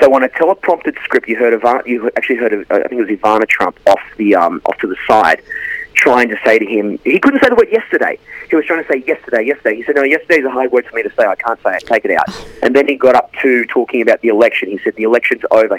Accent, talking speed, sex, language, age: Australian, 295 wpm, male, English, 30-49